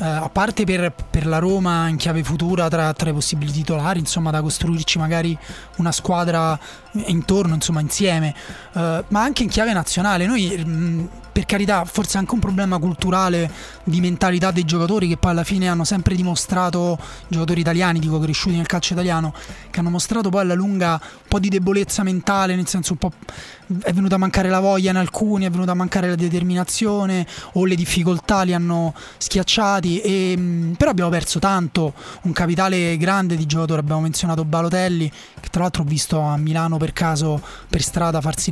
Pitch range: 160-185 Hz